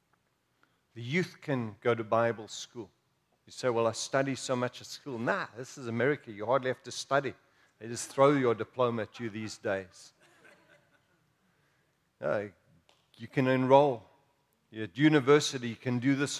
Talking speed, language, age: 160 wpm, English, 50-69